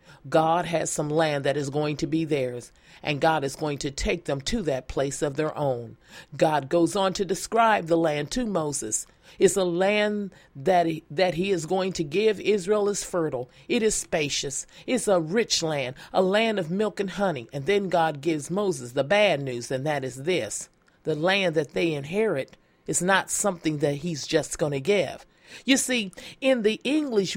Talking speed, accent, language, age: 195 wpm, American, English, 40-59